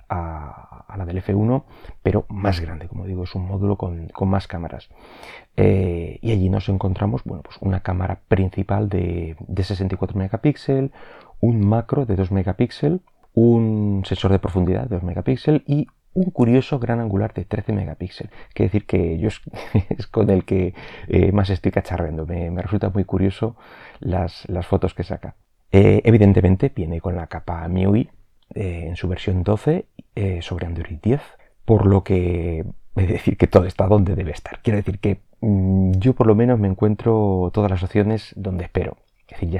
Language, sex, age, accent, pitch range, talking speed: Spanish, male, 30-49, Spanish, 90-105 Hz, 180 wpm